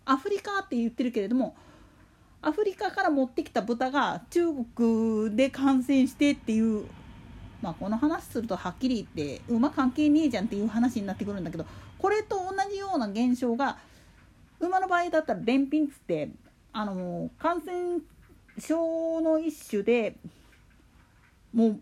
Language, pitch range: Japanese, 225-335 Hz